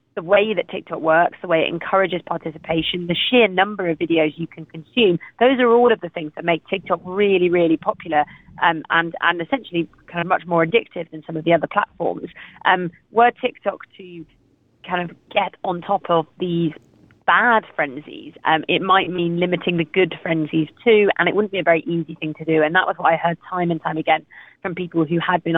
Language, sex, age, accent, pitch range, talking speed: English, female, 30-49, British, 165-190 Hz, 215 wpm